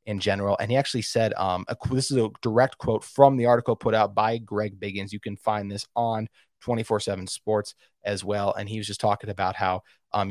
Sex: male